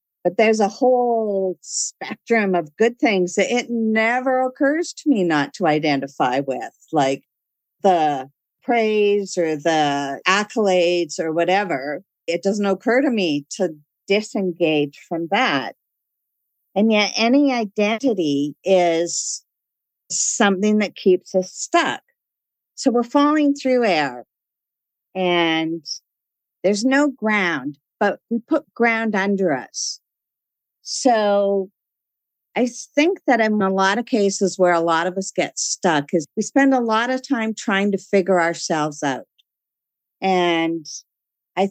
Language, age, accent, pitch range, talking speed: English, 50-69, American, 175-235 Hz, 130 wpm